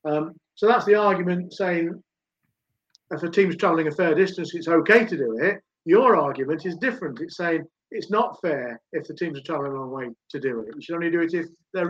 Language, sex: English, male